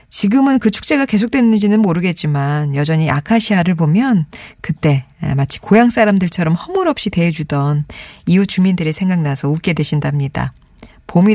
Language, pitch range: Korean, 150-215 Hz